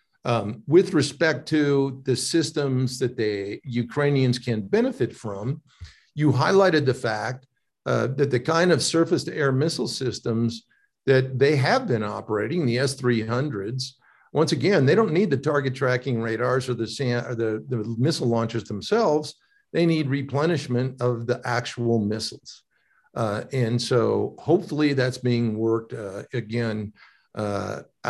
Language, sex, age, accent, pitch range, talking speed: English, male, 50-69, American, 115-145 Hz, 140 wpm